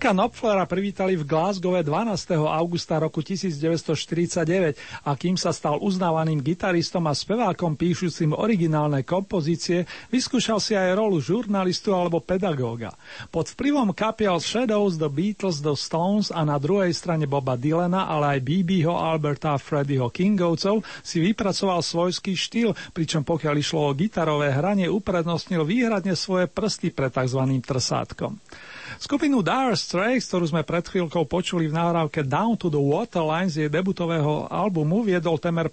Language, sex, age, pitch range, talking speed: Slovak, male, 40-59, 155-195 Hz, 140 wpm